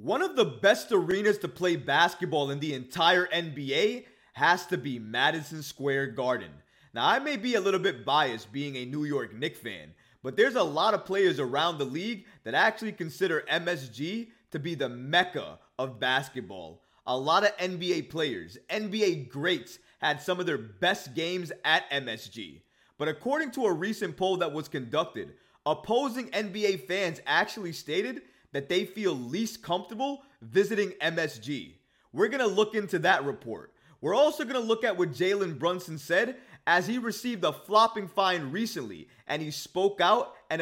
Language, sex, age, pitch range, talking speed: English, male, 20-39, 145-215 Hz, 170 wpm